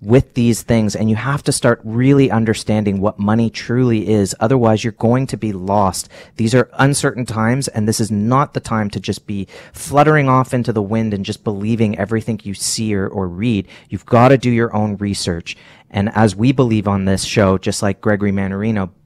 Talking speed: 205 wpm